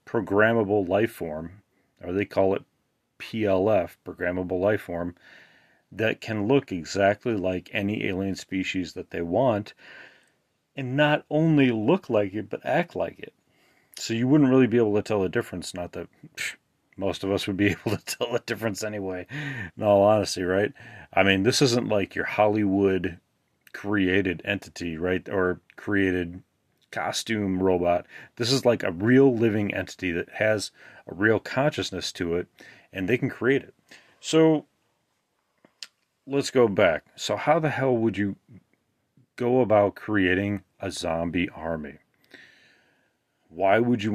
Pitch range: 90-120 Hz